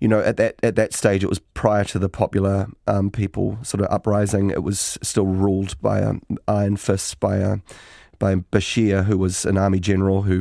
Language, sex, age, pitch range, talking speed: English, male, 30-49, 95-105 Hz, 215 wpm